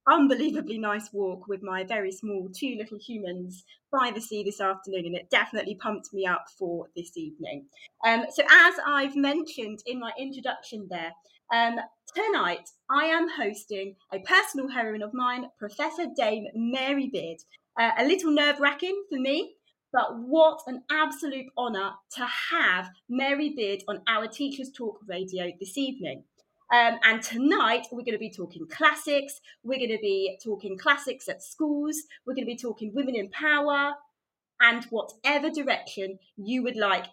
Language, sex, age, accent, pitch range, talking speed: English, female, 30-49, British, 215-290 Hz, 160 wpm